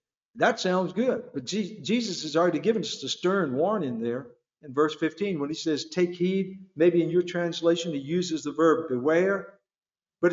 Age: 50-69